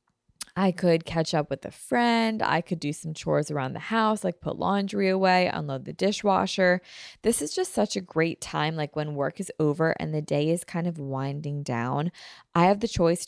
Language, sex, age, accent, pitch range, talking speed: English, female, 20-39, American, 150-190 Hz, 210 wpm